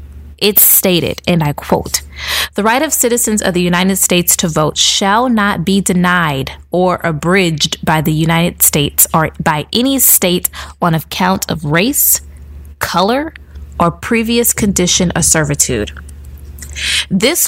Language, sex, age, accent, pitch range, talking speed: English, female, 20-39, American, 150-210 Hz, 135 wpm